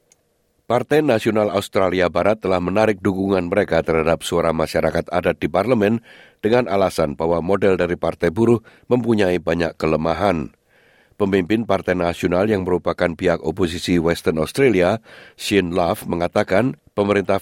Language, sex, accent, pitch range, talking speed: Indonesian, male, native, 90-110 Hz, 130 wpm